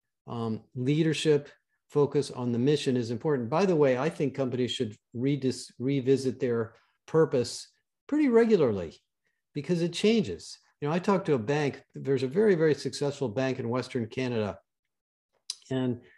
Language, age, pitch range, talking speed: English, 50-69, 130-165 Hz, 150 wpm